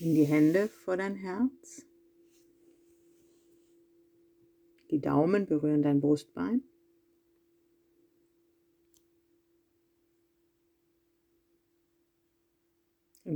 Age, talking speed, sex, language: 50-69, 55 wpm, female, German